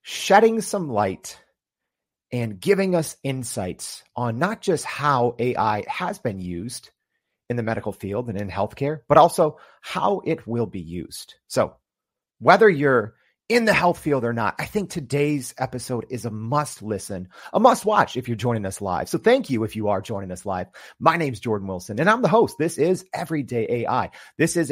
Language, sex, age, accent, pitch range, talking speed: English, male, 30-49, American, 110-165 Hz, 185 wpm